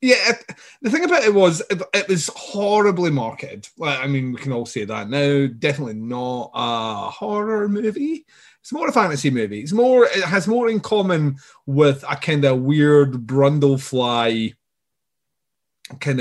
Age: 30-49